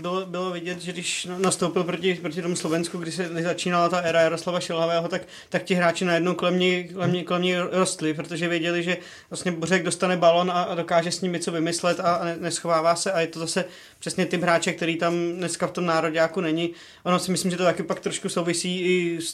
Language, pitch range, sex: Czech, 165-175 Hz, male